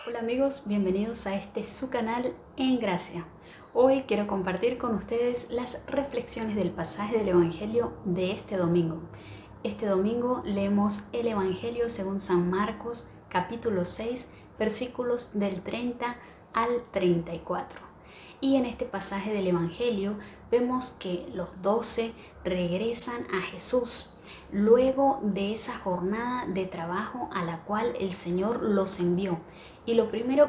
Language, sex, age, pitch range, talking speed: Spanish, female, 30-49, 190-235 Hz, 130 wpm